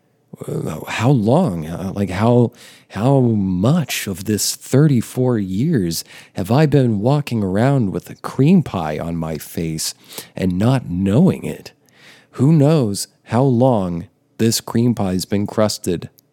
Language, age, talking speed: English, 40-59, 130 wpm